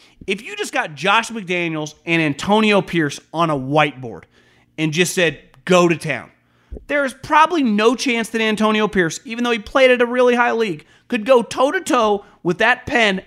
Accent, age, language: American, 30-49, English